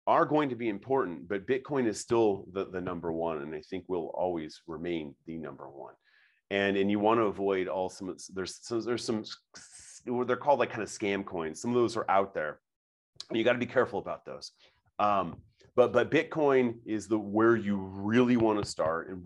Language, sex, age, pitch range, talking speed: English, male, 30-49, 95-130 Hz, 210 wpm